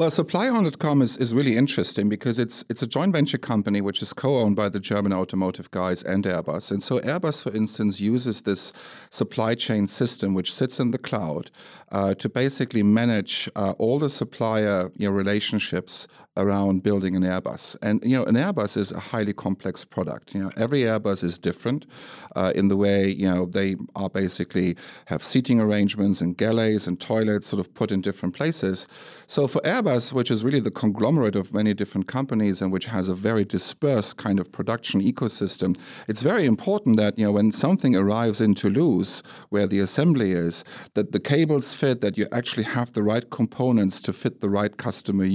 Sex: male